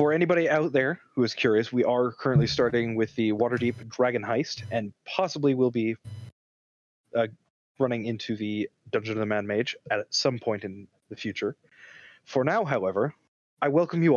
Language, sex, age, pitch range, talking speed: English, male, 30-49, 110-150 Hz, 170 wpm